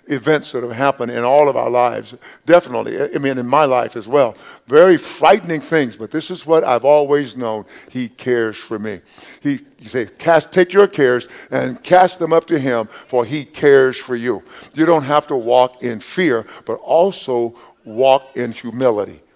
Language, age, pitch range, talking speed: English, 50-69, 120-150 Hz, 190 wpm